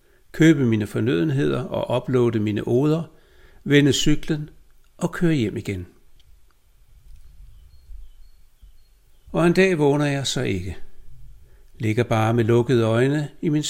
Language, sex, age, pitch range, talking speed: Danish, male, 60-79, 95-145 Hz, 120 wpm